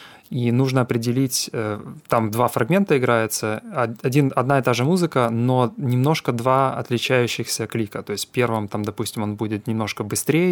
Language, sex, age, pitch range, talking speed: Russian, male, 20-39, 110-135 Hz, 155 wpm